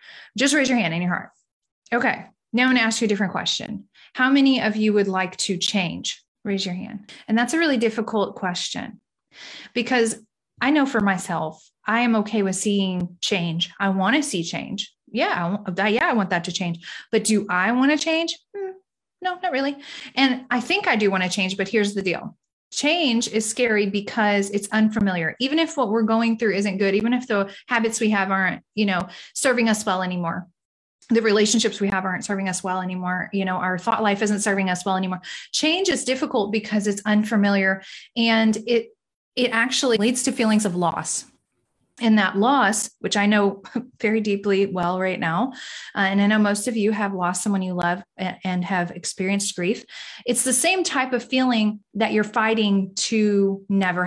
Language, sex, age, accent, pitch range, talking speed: English, female, 20-39, American, 190-240 Hz, 195 wpm